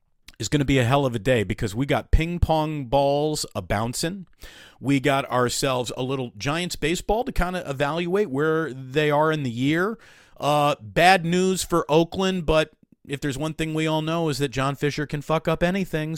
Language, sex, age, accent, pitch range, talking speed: English, male, 40-59, American, 125-160 Hz, 200 wpm